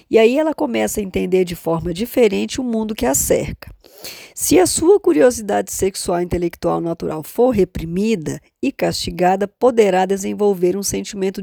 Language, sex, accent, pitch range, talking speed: Portuguese, female, Brazilian, 185-250 Hz, 155 wpm